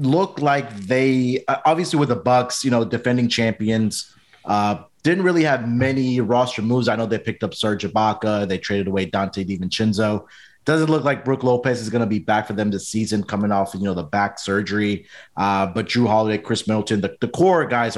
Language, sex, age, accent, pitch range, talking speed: English, male, 30-49, American, 105-125 Hz, 205 wpm